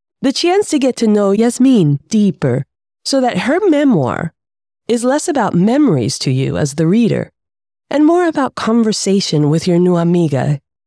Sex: female